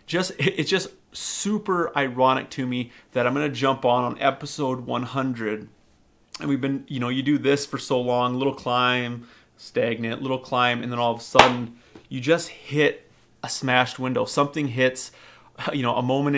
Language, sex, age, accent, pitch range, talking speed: English, male, 30-49, American, 125-145 Hz, 175 wpm